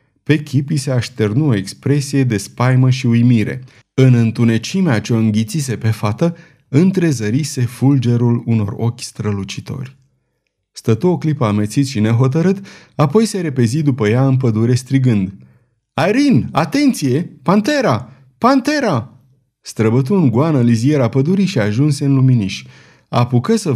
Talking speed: 125 wpm